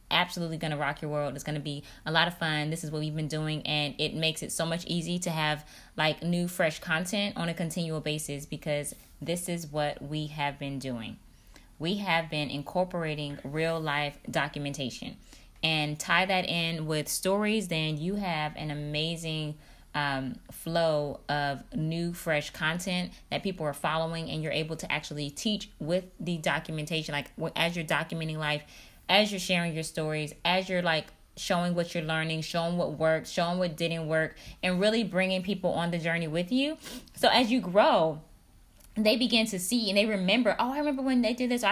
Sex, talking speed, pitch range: female, 190 wpm, 155-195 Hz